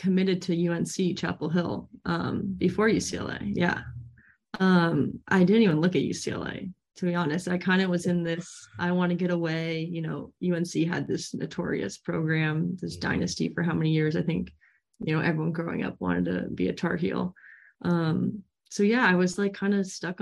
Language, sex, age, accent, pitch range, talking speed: English, female, 20-39, American, 165-185 Hz, 195 wpm